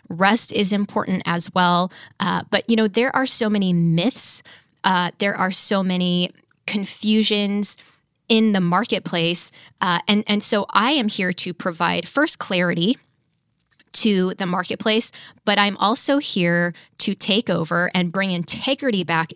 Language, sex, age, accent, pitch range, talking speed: English, female, 10-29, American, 175-210 Hz, 150 wpm